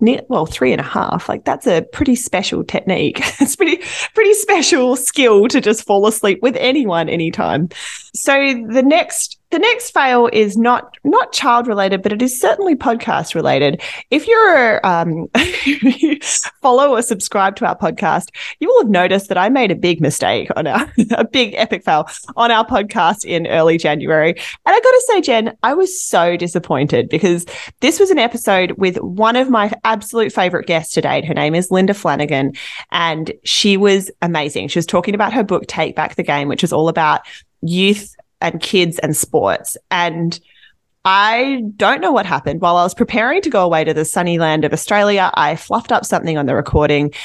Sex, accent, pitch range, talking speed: female, Australian, 175-250 Hz, 190 wpm